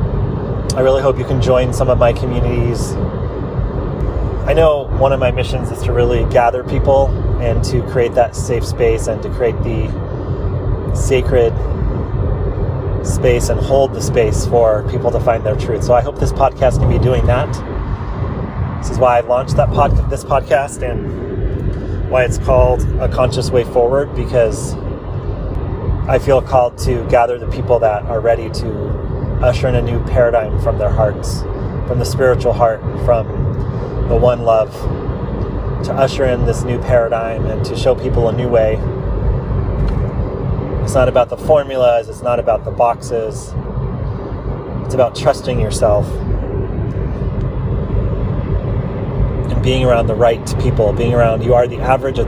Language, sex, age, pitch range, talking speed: English, male, 30-49, 105-125 Hz, 155 wpm